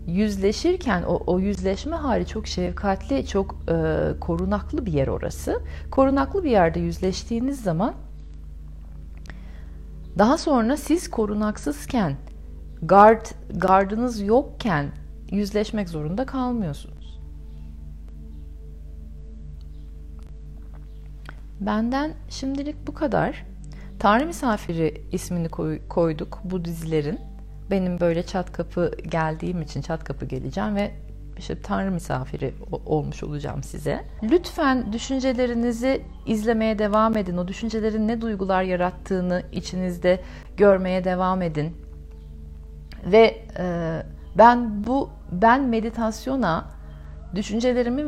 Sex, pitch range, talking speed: female, 140-225 Hz, 95 wpm